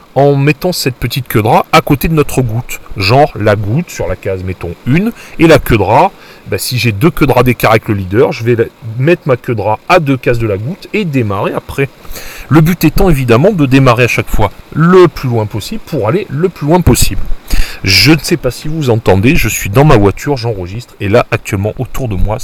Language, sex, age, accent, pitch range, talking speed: French, male, 40-59, French, 110-145 Hz, 220 wpm